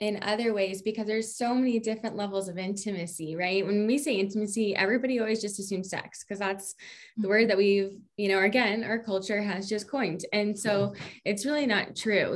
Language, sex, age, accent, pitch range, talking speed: English, female, 20-39, American, 195-215 Hz, 200 wpm